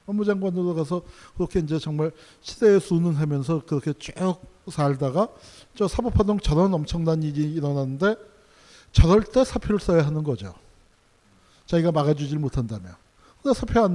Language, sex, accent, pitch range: Korean, male, native, 155-210 Hz